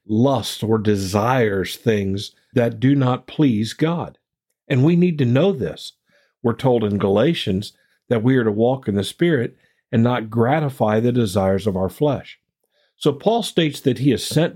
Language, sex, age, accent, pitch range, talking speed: English, male, 50-69, American, 110-150 Hz, 175 wpm